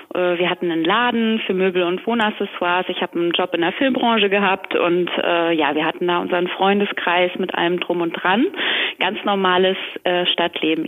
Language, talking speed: German, 180 wpm